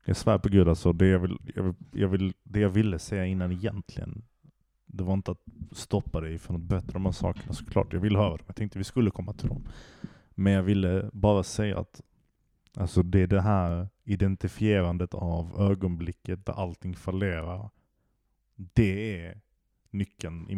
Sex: male